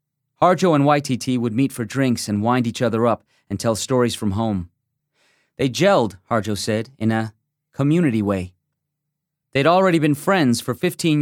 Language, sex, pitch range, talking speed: English, male, 115-150 Hz, 165 wpm